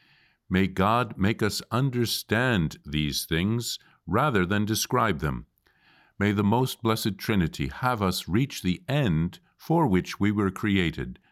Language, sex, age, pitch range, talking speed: English, male, 50-69, 80-115 Hz, 140 wpm